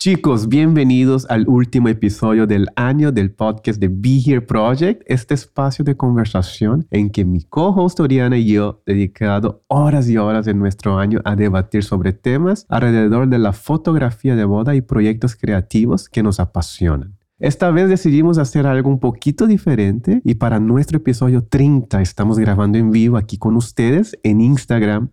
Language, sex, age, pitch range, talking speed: Spanish, male, 30-49, 105-135 Hz, 165 wpm